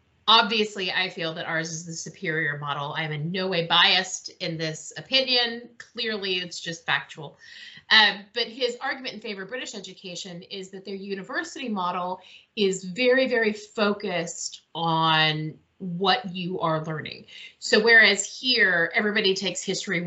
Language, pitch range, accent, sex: English, 165-220 Hz, American, female